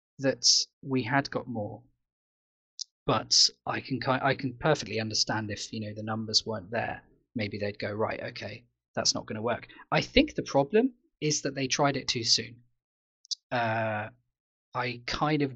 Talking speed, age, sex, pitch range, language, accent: 170 wpm, 20-39, male, 110-130 Hz, English, British